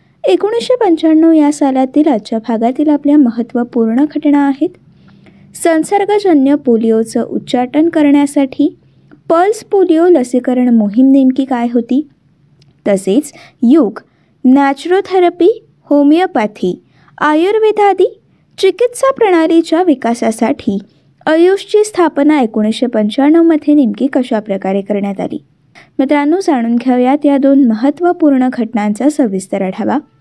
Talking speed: 90 wpm